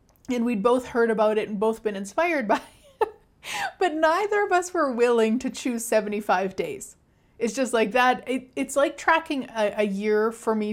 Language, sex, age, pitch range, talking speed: English, female, 30-49, 210-265 Hz, 195 wpm